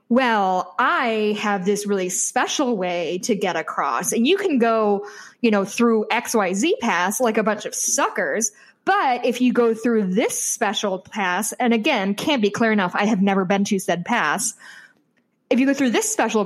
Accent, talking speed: American, 195 wpm